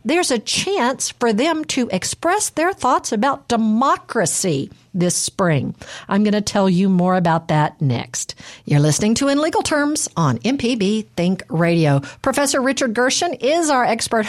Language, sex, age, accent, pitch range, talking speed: English, female, 50-69, American, 185-255 Hz, 160 wpm